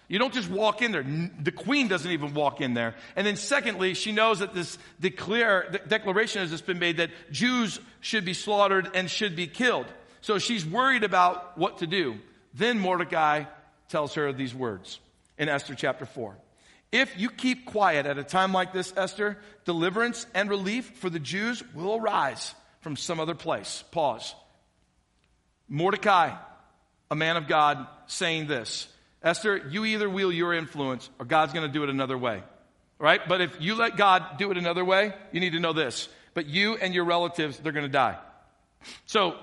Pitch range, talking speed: 160-205 Hz, 185 wpm